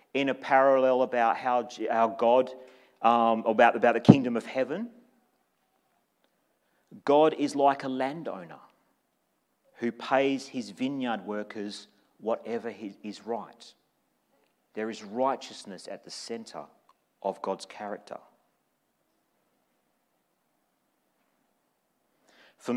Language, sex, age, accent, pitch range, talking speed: English, male, 40-59, Australian, 110-135 Hz, 100 wpm